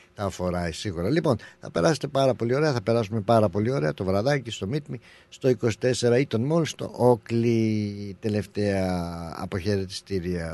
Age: 60-79